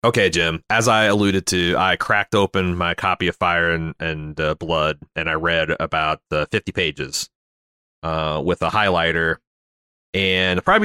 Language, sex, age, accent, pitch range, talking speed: English, male, 30-49, American, 85-115 Hz, 170 wpm